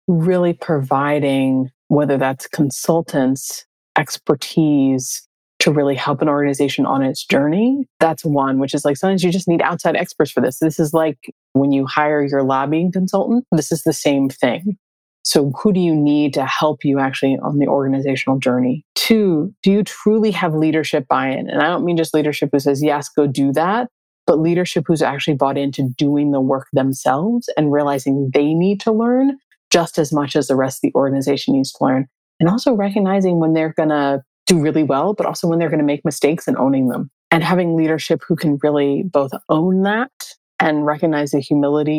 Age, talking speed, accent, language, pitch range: 20-39, 195 wpm, American, English, 140-180 Hz